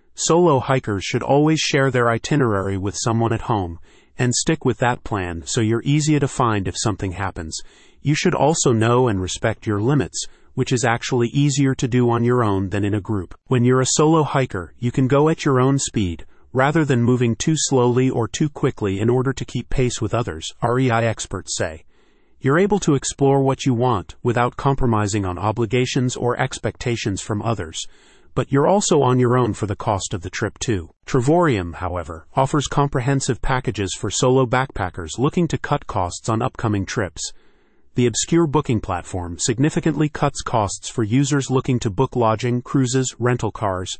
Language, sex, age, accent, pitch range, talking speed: English, male, 40-59, American, 110-135 Hz, 185 wpm